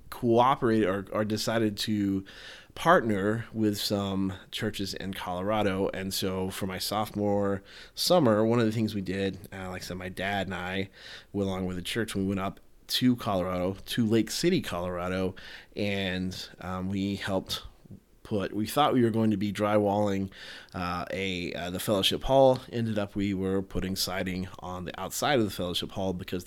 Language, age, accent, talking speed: English, 20-39, American, 175 wpm